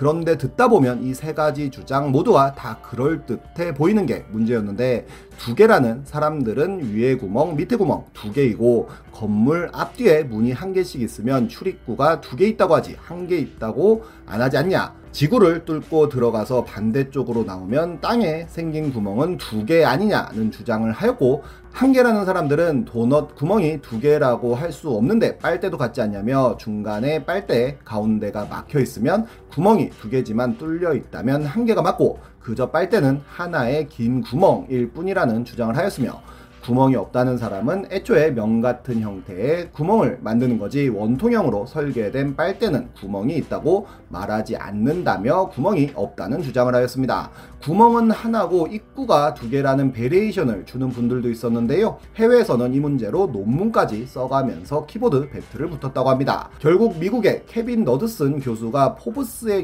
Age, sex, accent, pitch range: 30-49, male, native, 120-170 Hz